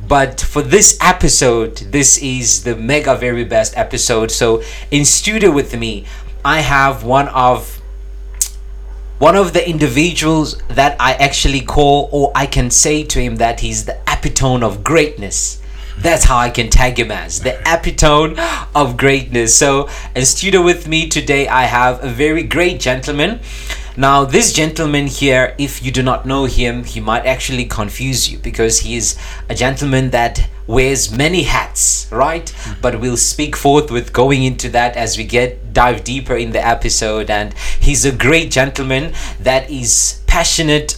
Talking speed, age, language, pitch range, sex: 165 wpm, 30-49, English, 115-145 Hz, male